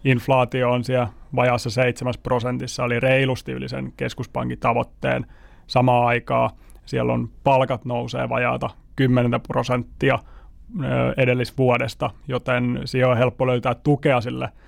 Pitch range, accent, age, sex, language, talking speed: 120-135 Hz, native, 30-49, male, Finnish, 115 wpm